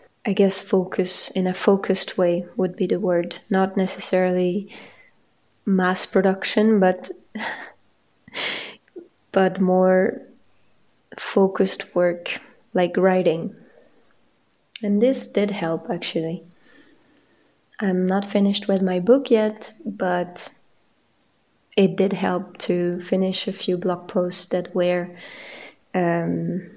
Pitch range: 185-215 Hz